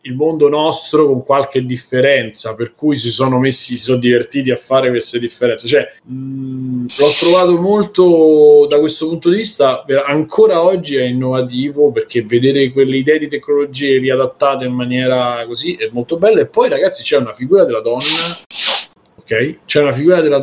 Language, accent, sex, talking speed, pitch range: Italian, native, male, 170 wpm, 120-150 Hz